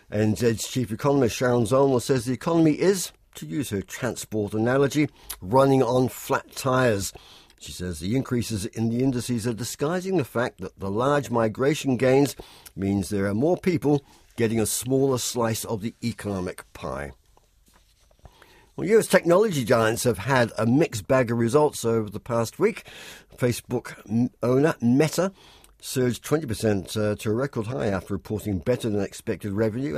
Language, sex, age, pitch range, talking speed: English, male, 60-79, 110-140 Hz, 155 wpm